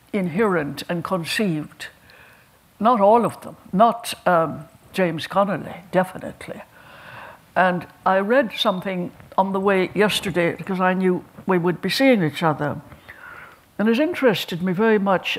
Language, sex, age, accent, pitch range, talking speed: English, female, 60-79, British, 170-215 Hz, 135 wpm